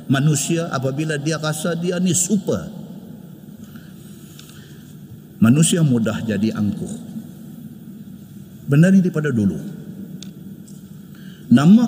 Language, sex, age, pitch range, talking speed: Malay, male, 50-69, 160-200 Hz, 80 wpm